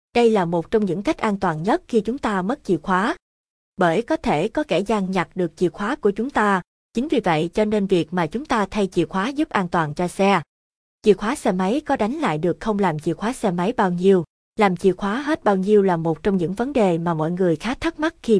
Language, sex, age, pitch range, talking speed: Vietnamese, female, 20-39, 180-220 Hz, 260 wpm